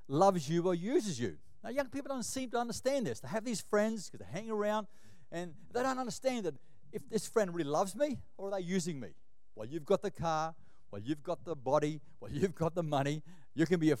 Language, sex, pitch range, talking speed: English, male, 160-230 Hz, 240 wpm